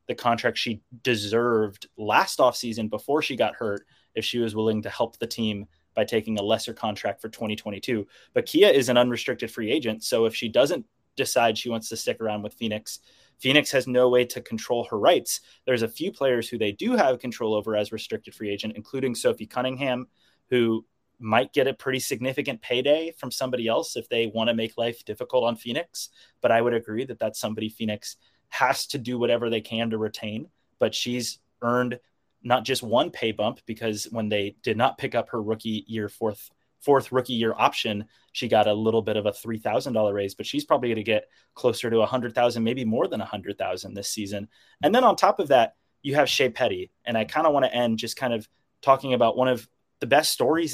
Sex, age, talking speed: male, 20-39, 210 wpm